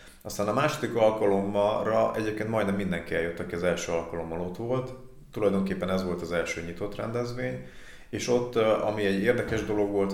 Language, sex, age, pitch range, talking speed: Hungarian, male, 30-49, 90-110 Hz, 165 wpm